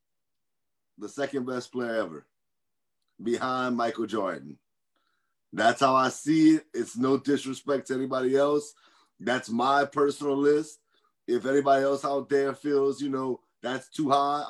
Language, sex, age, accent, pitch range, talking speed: English, male, 30-49, American, 140-170 Hz, 140 wpm